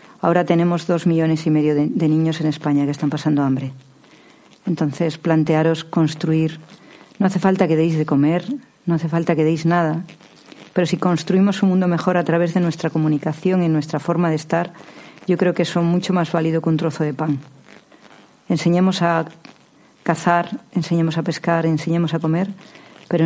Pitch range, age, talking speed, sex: 155-175 Hz, 50-69, 180 wpm, female